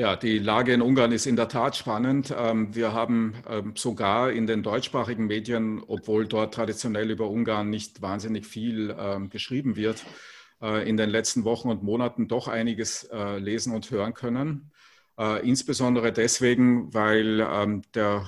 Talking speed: 140 wpm